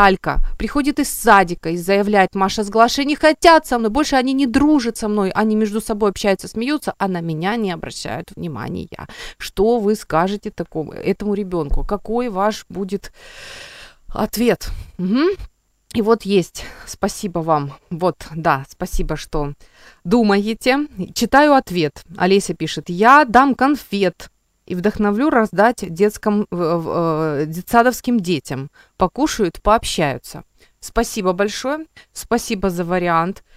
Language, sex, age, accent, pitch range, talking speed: Ukrainian, female, 20-39, native, 165-225 Hz, 120 wpm